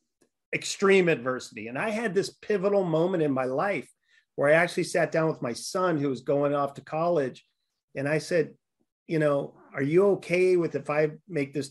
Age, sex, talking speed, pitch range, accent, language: 40-59, male, 195 wpm, 135-170 Hz, American, English